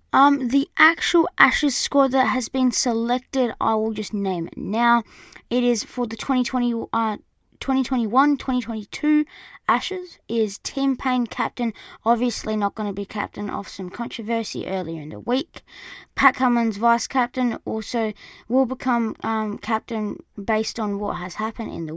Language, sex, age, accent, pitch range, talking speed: English, female, 20-39, Australian, 215-255 Hz, 150 wpm